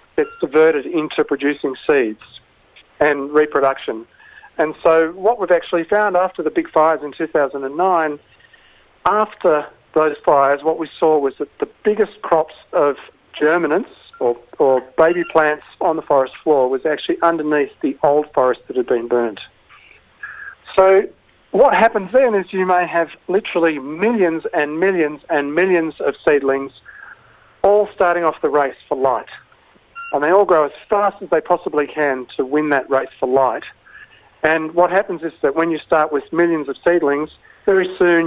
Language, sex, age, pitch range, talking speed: English, male, 40-59, 145-185 Hz, 160 wpm